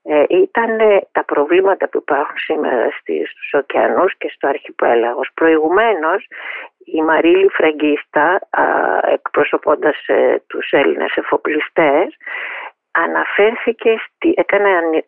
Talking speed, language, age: 85 wpm, Greek, 50-69